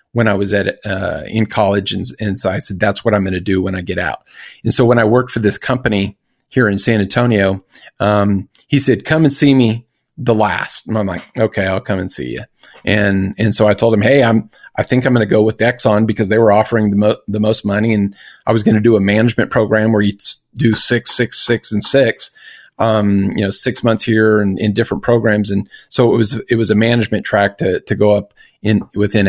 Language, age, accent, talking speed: English, 40-59, American, 245 wpm